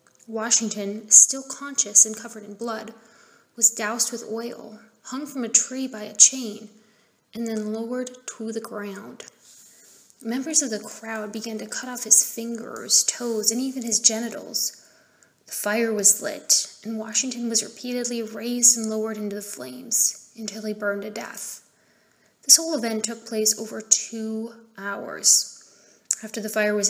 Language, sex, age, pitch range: English, female, 20-39, 215-235 Hz